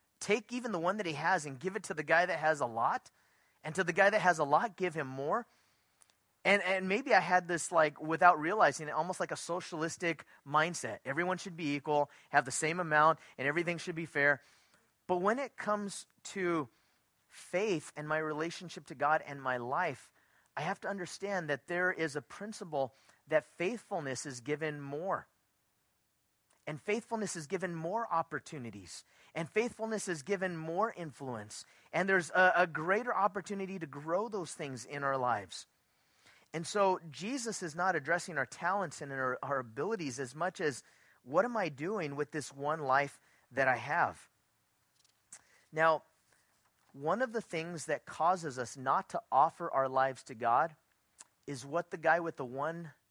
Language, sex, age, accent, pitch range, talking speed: English, male, 30-49, American, 145-185 Hz, 180 wpm